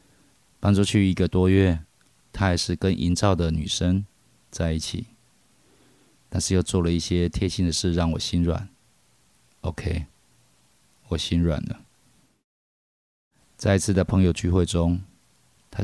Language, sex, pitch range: Chinese, male, 80-95 Hz